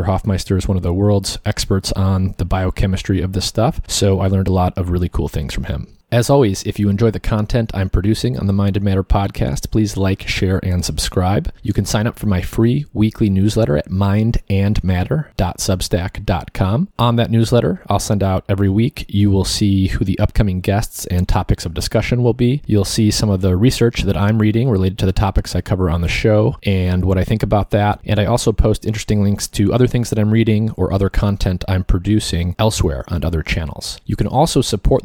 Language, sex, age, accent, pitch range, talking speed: English, male, 30-49, American, 95-110 Hz, 215 wpm